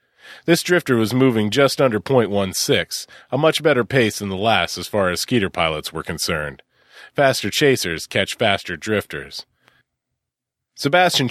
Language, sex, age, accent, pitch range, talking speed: English, male, 30-49, American, 100-130 Hz, 145 wpm